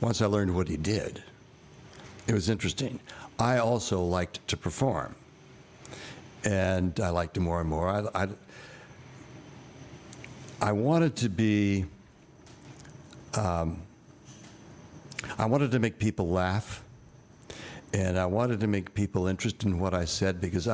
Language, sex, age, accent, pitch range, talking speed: English, male, 60-79, American, 95-120 Hz, 135 wpm